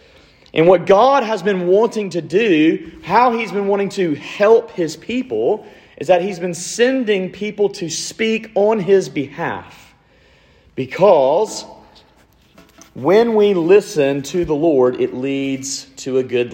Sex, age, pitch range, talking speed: male, 40-59, 155-200 Hz, 140 wpm